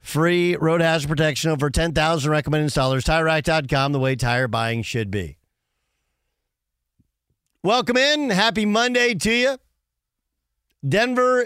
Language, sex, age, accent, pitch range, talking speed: English, male, 50-69, American, 135-190 Hz, 115 wpm